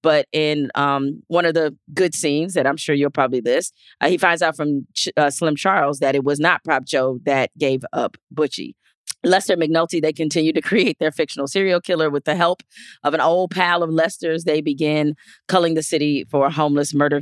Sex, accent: female, American